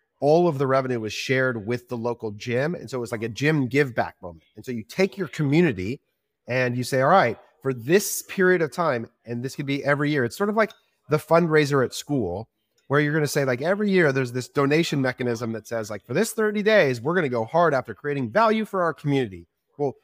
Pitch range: 120-160 Hz